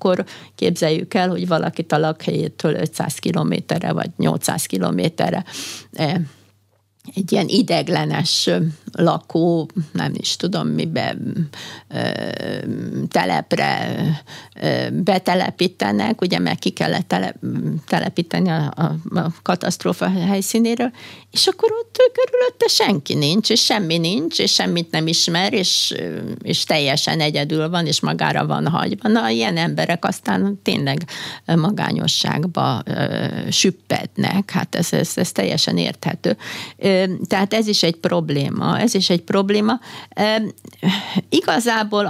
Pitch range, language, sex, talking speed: 160-200 Hz, Hungarian, female, 110 wpm